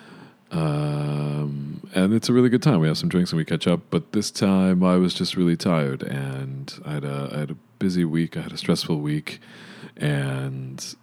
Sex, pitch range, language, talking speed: male, 70-100 Hz, English, 205 wpm